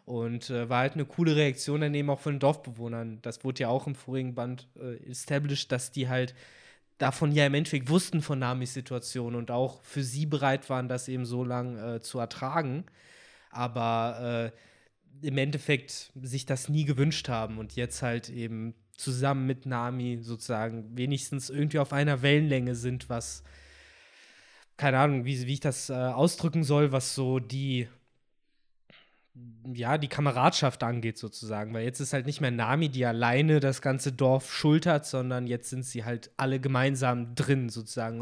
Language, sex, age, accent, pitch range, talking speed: German, male, 20-39, German, 115-140 Hz, 170 wpm